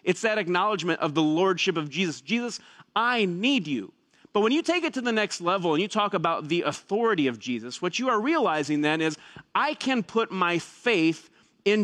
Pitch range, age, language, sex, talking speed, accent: 175-245 Hz, 40-59, English, male, 210 wpm, American